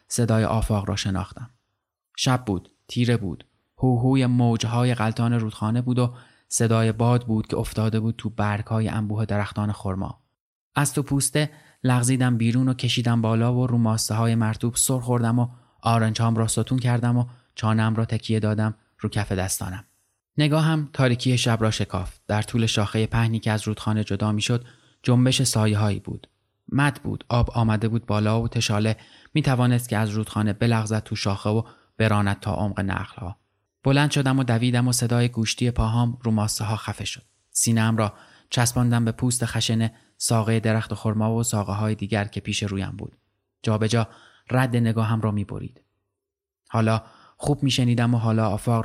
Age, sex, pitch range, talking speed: 20-39, male, 110-120 Hz, 160 wpm